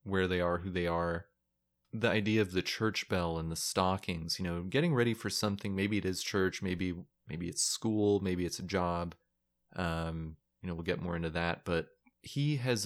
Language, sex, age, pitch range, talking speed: English, male, 20-39, 80-100 Hz, 205 wpm